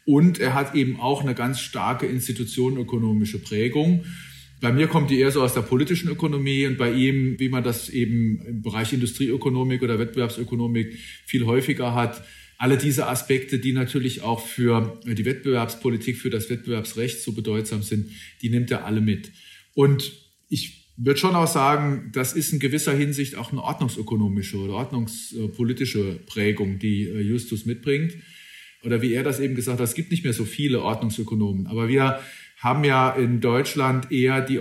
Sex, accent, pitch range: male, German, 115-135 Hz